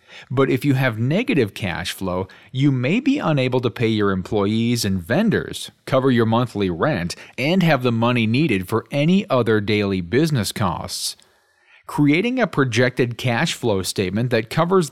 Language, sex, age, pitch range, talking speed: English, male, 40-59, 100-155 Hz, 160 wpm